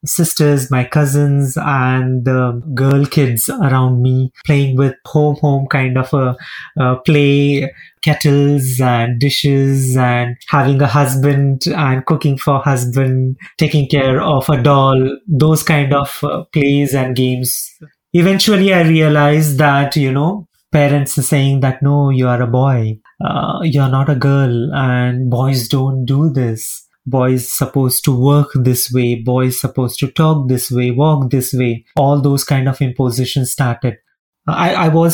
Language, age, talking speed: English, 30-49, 155 wpm